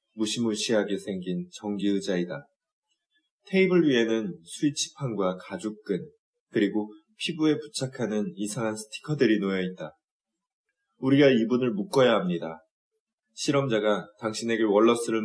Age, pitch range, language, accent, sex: 20-39, 105-170 Hz, Korean, native, male